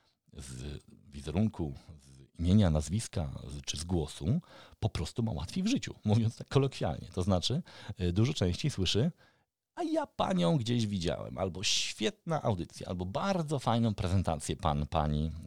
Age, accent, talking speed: 50-69, native, 140 wpm